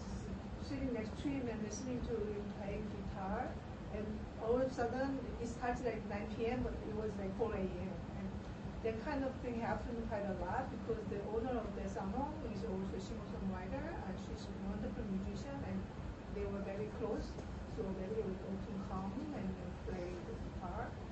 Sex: female